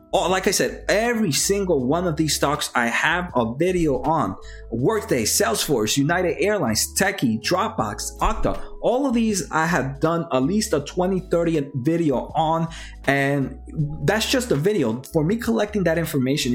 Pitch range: 135-190 Hz